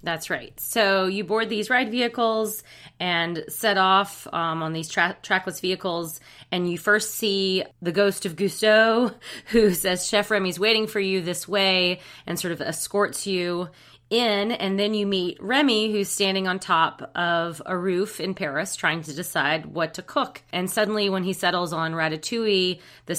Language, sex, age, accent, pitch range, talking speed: English, female, 30-49, American, 165-200 Hz, 175 wpm